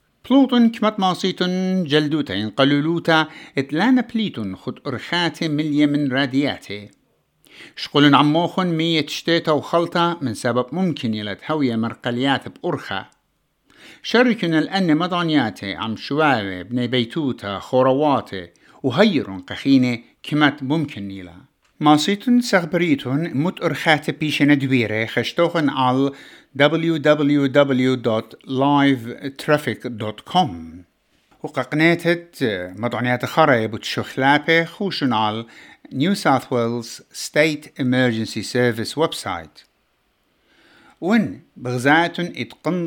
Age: 60-79